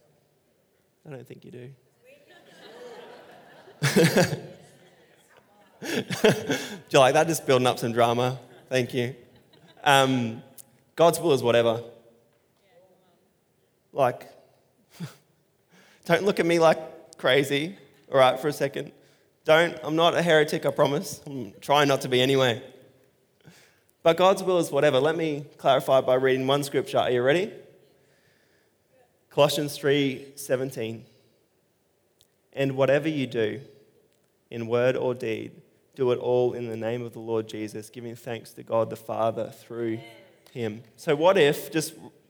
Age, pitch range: 20-39, 120-155 Hz